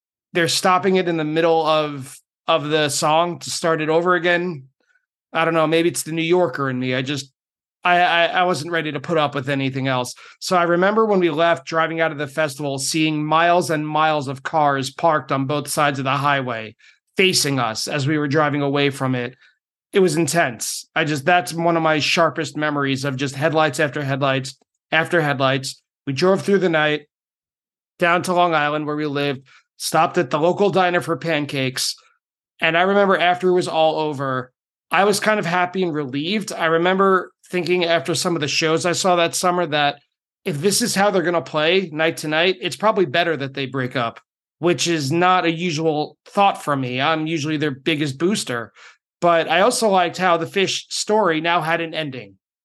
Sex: male